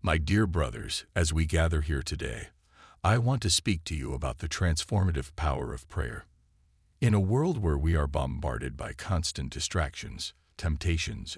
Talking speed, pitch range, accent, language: 165 wpm, 75-95 Hz, American, English